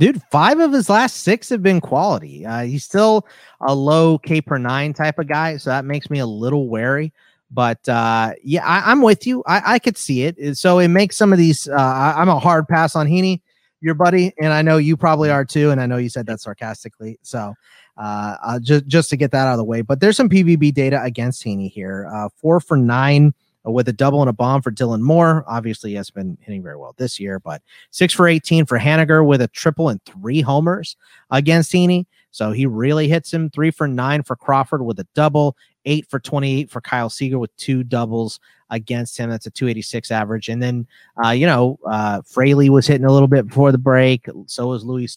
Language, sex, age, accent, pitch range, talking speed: English, male, 30-49, American, 120-160 Hz, 220 wpm